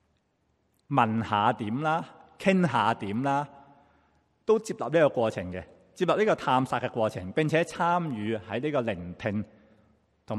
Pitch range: 95-130 Hz